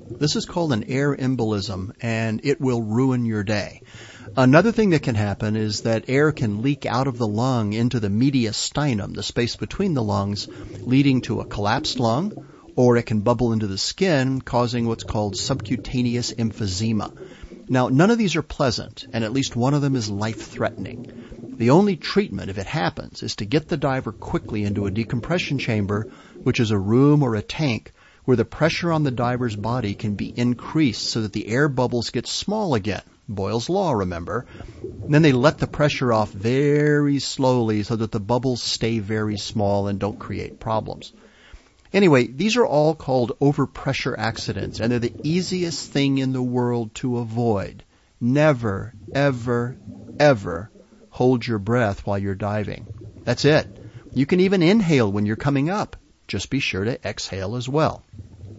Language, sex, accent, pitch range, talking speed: English, male, American, 110-135 Hz, 175 wpm